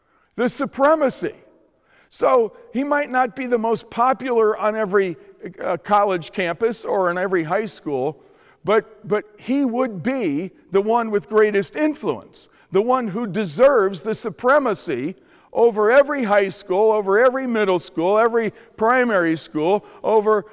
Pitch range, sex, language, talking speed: 200-260 Hz, male, English, 140 wpm